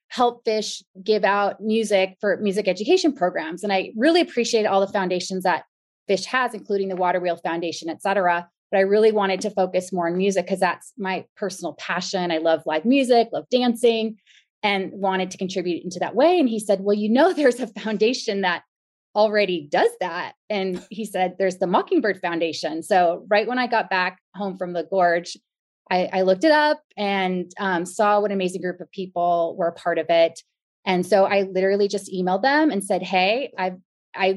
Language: English